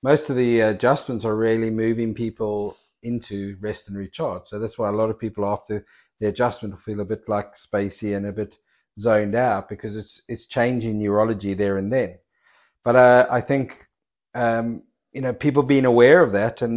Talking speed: 195 wpm